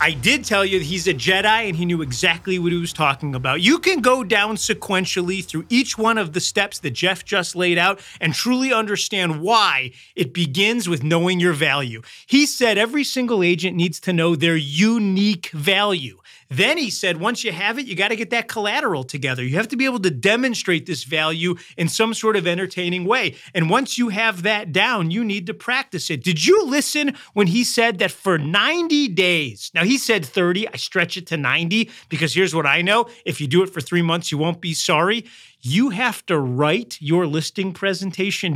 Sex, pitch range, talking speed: male, 165-225 Hz, 210 wpm